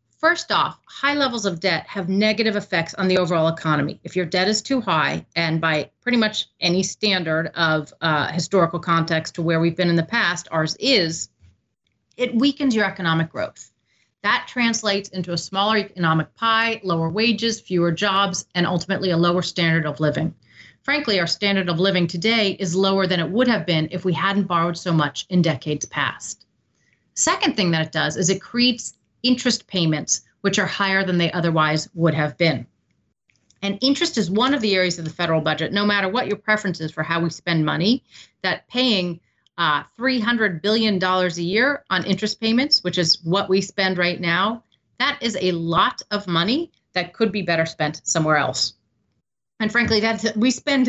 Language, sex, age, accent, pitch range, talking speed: English, female, 30-49, American, 165-220 Hz, 185 wpm